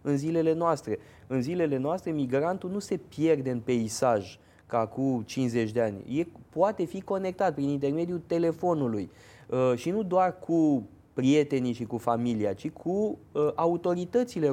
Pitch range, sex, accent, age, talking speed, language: 120-165 Hz, male, native, 20-39, 140 wpm, Romanian